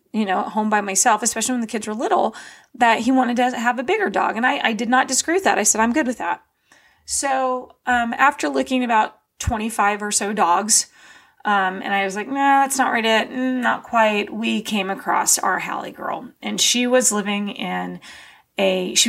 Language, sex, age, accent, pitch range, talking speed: English, female, 30-49, American, 195-250 Hz, 215 wpm